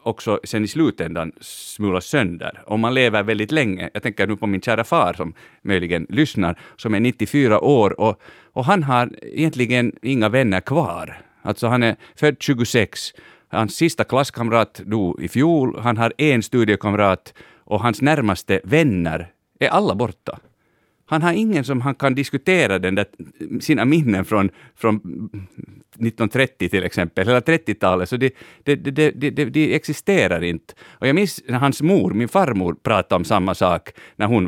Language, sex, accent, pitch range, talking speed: Swedish, male, Finnish, 100-140 Hz, 165 wpm